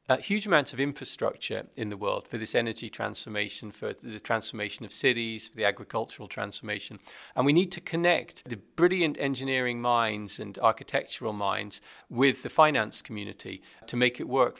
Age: 40-59